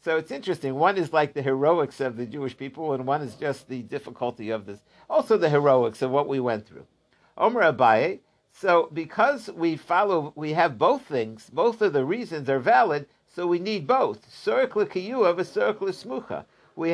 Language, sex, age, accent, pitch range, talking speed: English, male, 60-79, American, 135-185 Hz, 190 wpm